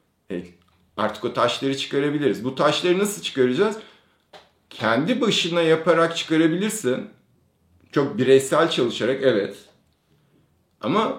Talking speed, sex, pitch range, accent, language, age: 95 wpm, male, 120-175 Hz, native, Turkish, 50-69